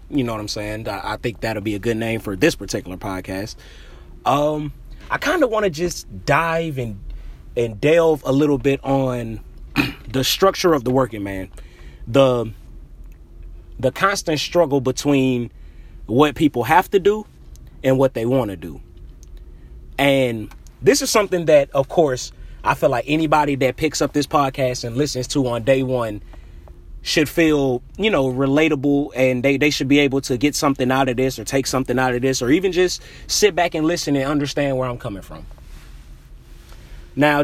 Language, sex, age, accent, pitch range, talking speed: English, male, 30-49, American, 105-145 Hz, 180 wpm